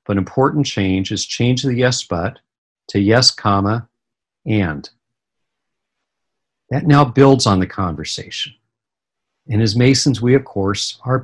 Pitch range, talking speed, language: 100-120 Hz, 135 wpm, English